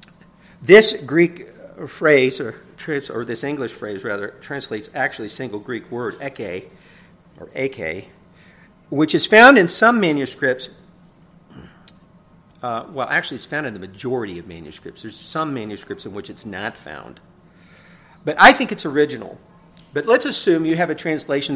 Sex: male